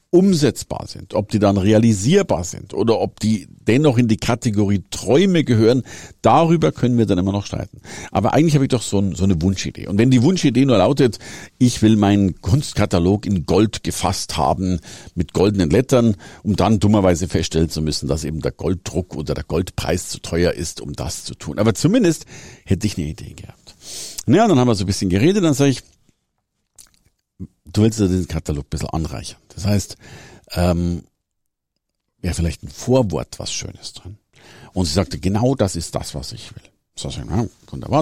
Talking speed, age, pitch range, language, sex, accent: 185 wpm, 50-69, 90-120 Hz, German, male, German